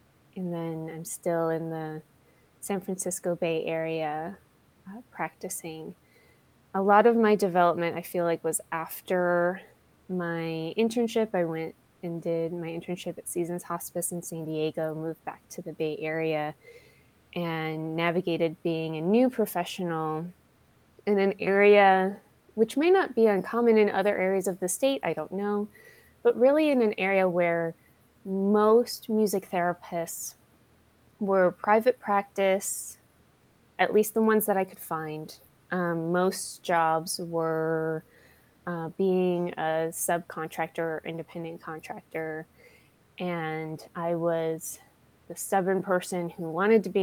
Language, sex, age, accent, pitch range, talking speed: English, female, 20-39, American, 160-195 Hz, 135 wpm